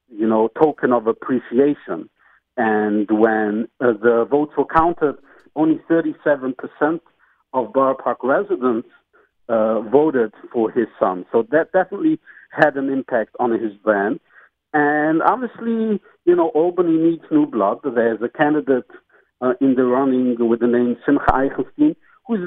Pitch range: 120-175 Hz